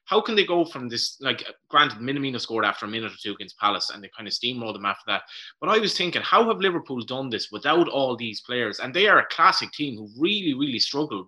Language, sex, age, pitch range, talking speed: English, male, 20-39, 115-155 Hz, 255 wpm